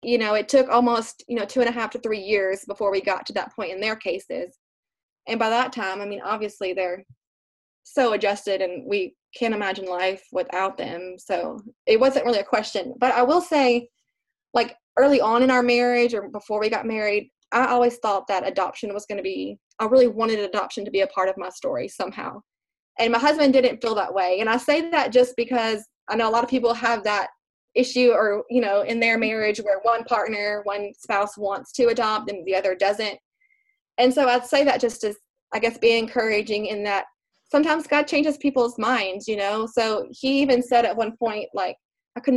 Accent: American